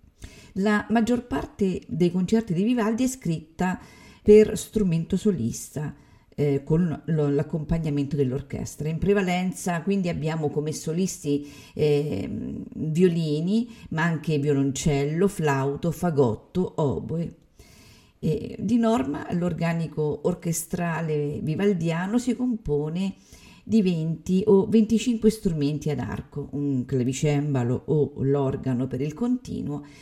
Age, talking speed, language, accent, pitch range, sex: 50-69, 105 wpm, Italian, native, 145-200 Hz, female